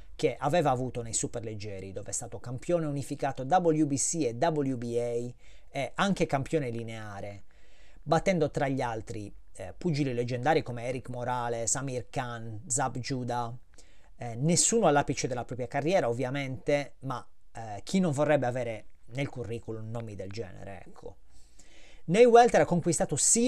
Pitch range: 115-155 Hz